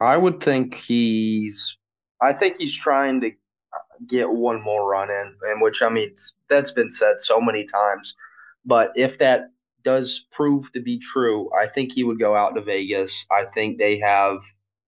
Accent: American